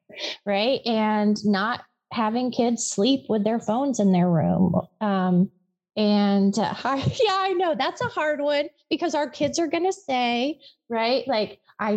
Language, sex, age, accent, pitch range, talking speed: English, female, 30-49, American, 185-235 Hz, 155 wpm